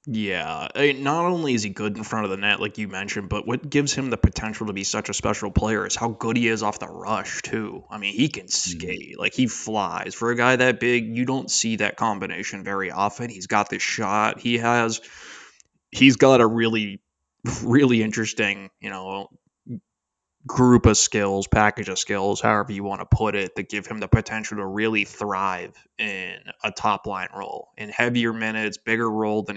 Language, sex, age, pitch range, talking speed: English, male, 20-39, 105-120 Hz, 200 wpm